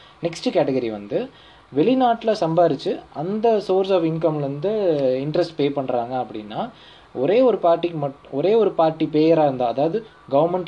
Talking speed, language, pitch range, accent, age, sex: 135 wpm, Tamil, 135-185 Hz, native, 20-39, male